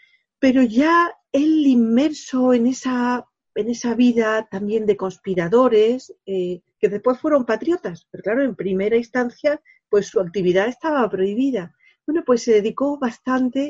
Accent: Spanish